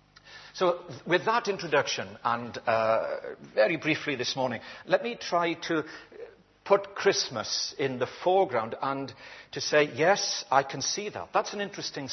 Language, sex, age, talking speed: English, male, 60-79, 150 wpm